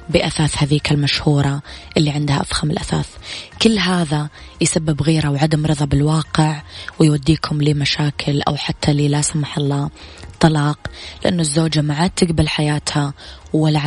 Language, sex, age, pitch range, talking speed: Arabic, female, 20-39, 145-170 Hz, 130 wpm